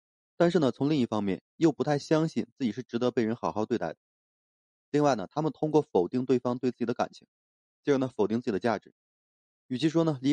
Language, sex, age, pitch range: Chinese, male, 20-39, 100-145 Hz